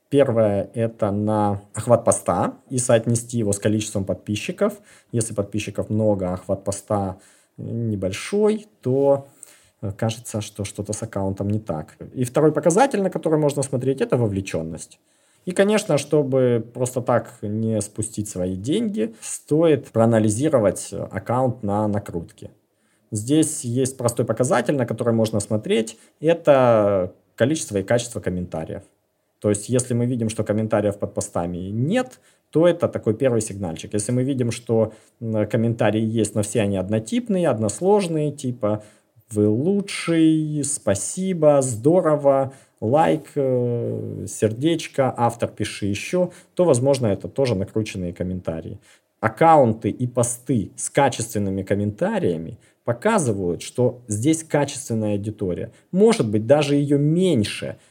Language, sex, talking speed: Russian, male, 125 wpm